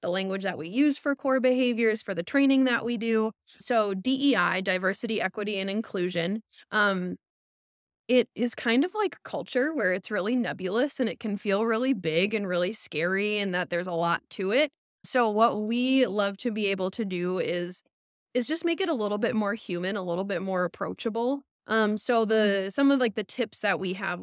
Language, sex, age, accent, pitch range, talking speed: English, female, 20-39, American, 190-230 Hz, 205 wpm